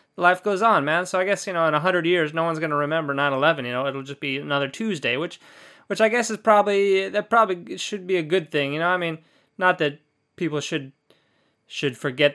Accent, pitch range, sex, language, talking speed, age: American, 145-190 Hz, male, English, 240 wpm, 20-39